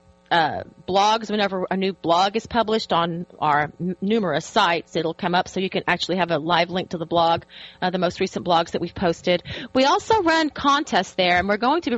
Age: 30-49